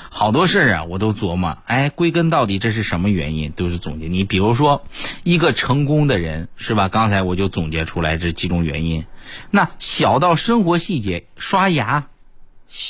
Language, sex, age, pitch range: Chinese, male, 50-69, 90-140 Hz